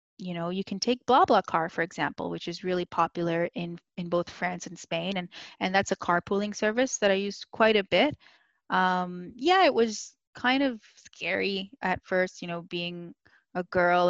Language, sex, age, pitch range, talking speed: English, female, 20-39, 175-230 Hz, 195 wpm